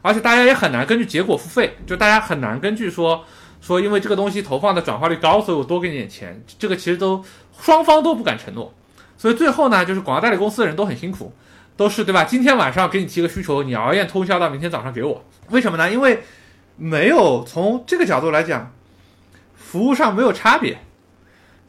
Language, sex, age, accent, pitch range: Chinese, male, 20-39, native, 140-215 Hz